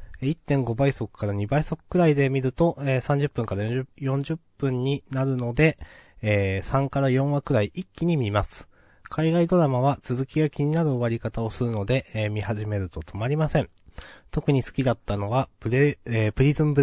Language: Japanese